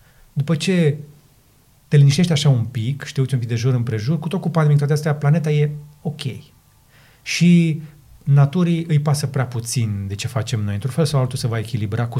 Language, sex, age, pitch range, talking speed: Romanian, male, 30-49, 115-145 Hz, 200 wpm